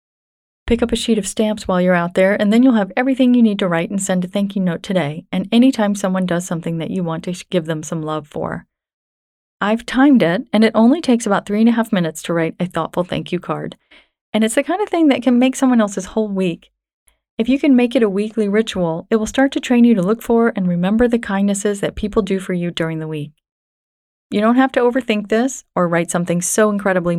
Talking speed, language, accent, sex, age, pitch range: 250 wpm, English, American, female, 30-49, 175-225 Hz